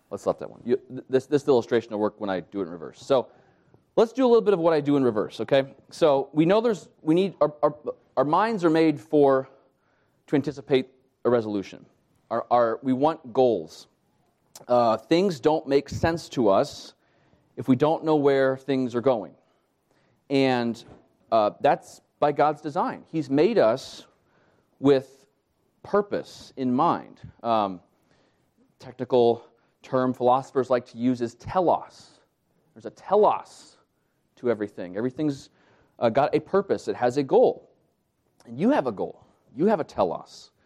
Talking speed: 165 wpm